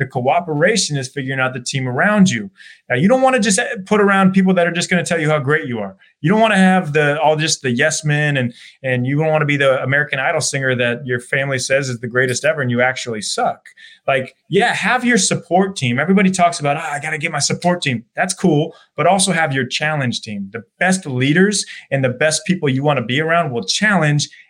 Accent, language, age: American, English, 30-49